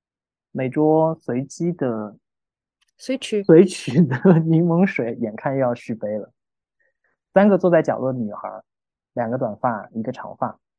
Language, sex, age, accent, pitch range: Chinese, male, 20-39, native, 115-155 Hz